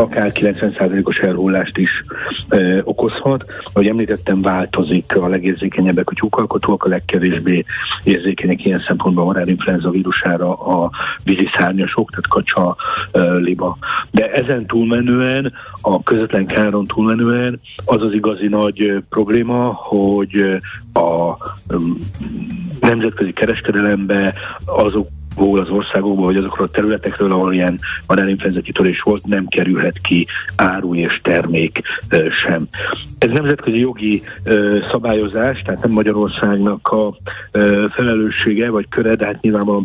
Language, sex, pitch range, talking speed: Hungarian, male, 95-115 Hz, 120 wpm